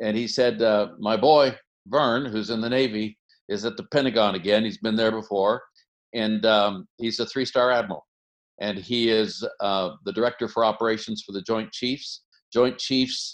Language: English